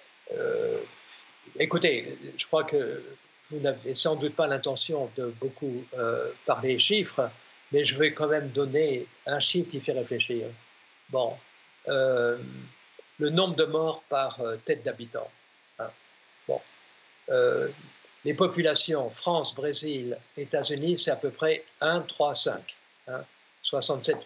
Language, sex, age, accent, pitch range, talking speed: French, male, 50-69, French, 135-175 Hz, 125 wpm